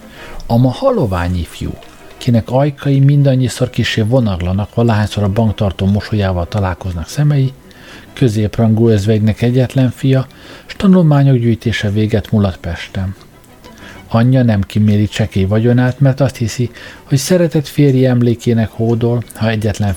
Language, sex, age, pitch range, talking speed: Hungarian, male, 50-69, 105-130 Hz, 115 wpm